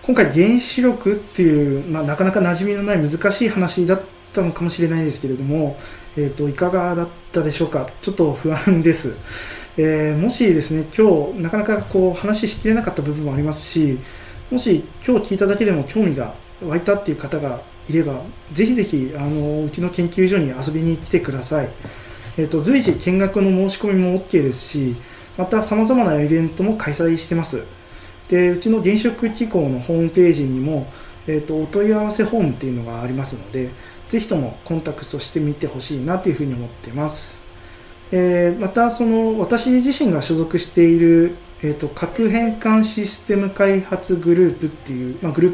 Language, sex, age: Japanese, male, 20-39